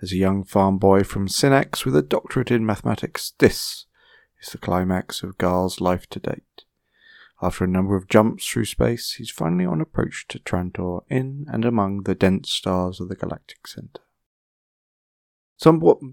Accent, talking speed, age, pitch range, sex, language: British, 165 wpm, 30-49, 95-120 Hz, male, English